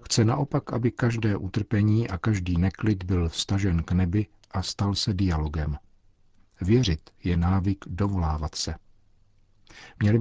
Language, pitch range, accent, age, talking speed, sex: Czech, 85-105 Hz, native, 50-69, 130 wpm, male